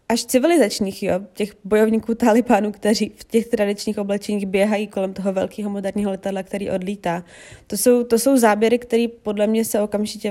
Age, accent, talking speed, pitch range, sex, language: 20-39, native, 155 wpm, 200-235 Hz, female, Czech